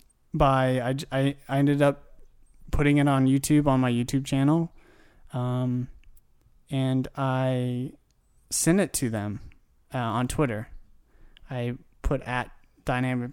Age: 20-39